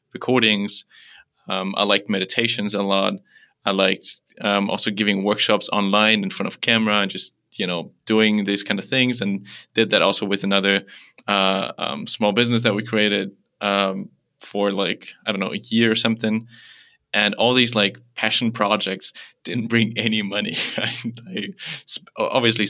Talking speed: 165 wpm